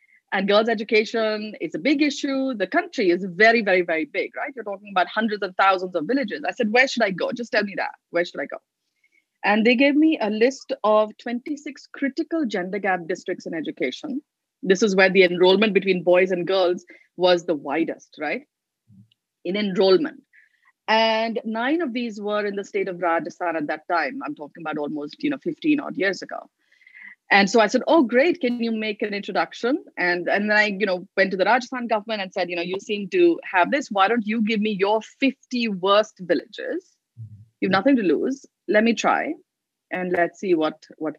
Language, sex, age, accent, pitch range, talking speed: English, female, 30-49, Indian, 180-265 Hz, 205 wpm